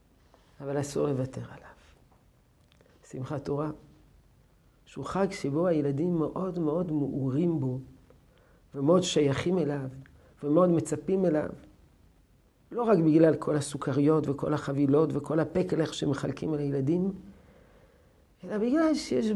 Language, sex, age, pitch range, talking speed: Hebrew, male, 50-69, 140-200 Hz, 110 wpm